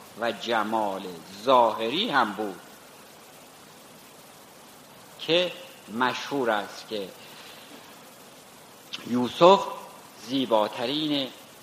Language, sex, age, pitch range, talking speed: Persian, male, 60-79, 130-170 Hz, 55 wpm